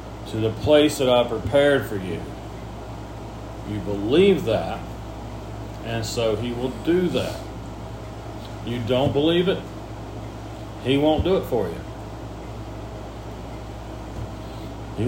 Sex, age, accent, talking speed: male, 40-59, American, 110 wpm